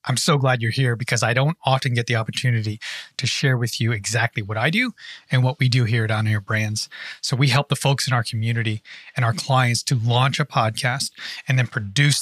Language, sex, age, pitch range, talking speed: English, male, 30-49, 120-155 Hz, 230 wpm